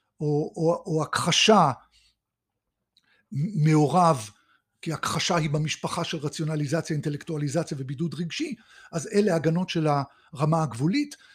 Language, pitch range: Hebrew, 155-215 Hz